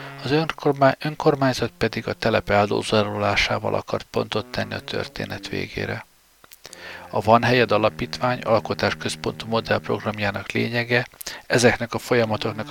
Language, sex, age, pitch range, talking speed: Hungarian, male, 60-79, 105-130 Hz, 105 wpm